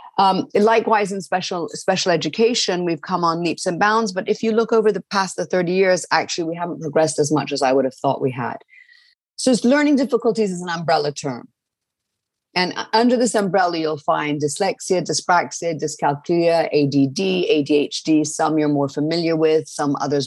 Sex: female